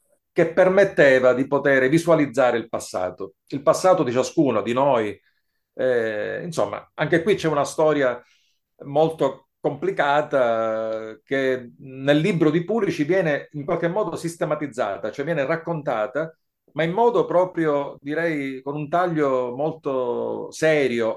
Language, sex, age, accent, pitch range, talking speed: Italian, male, 40-59, native, 125-165 Hz, 130 wpm